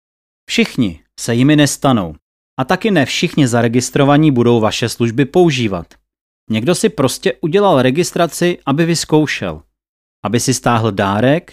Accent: native